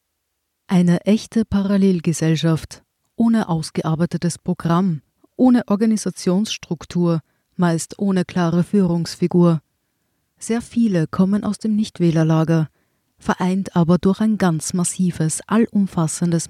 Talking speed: 90 wpm